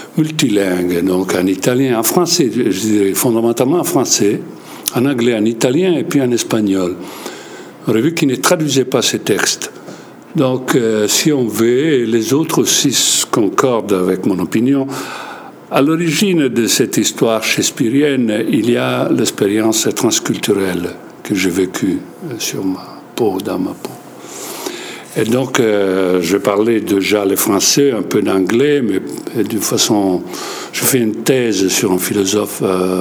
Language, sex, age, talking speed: French, male, 60-79, 145 wpm